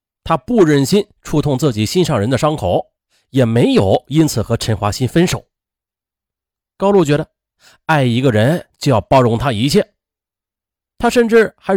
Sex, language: male, Chinese